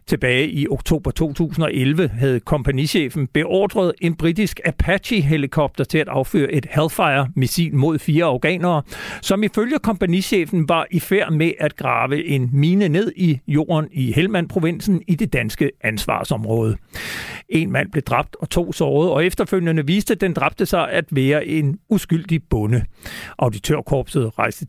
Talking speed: 145 wpm